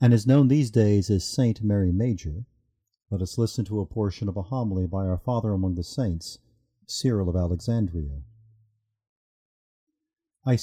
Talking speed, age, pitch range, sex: 160 wpm, 50-69, 100-130 Hz, male